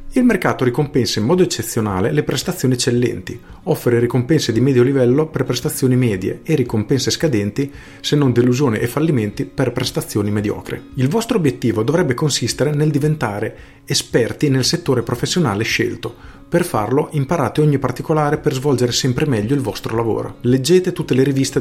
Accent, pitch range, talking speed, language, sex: native, 115-140 Hz, 155 wpm, Italian, male